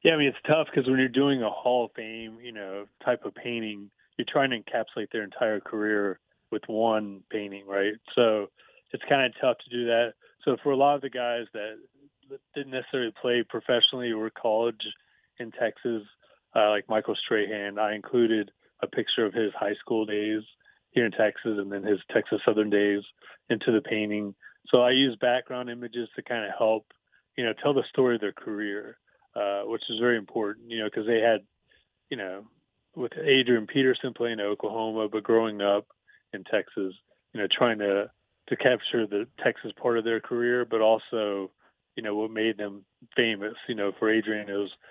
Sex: male